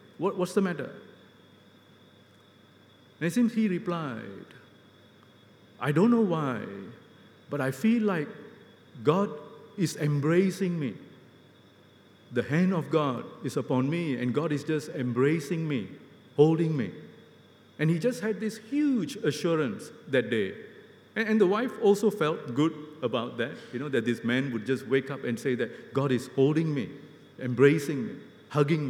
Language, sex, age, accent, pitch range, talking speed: English, male, 50-69, Malaysian, 115-165 Hz, 150 wpm